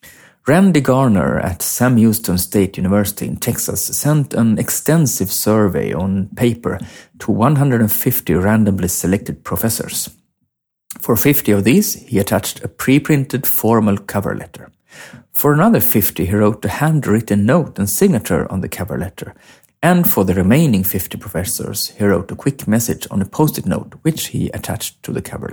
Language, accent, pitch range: English, Swedish, 100-140 Hz